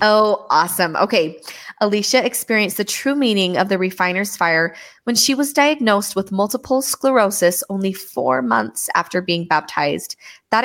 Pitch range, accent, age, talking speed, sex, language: 180-235 Hz, American, 20-39, 145 wpm, female, English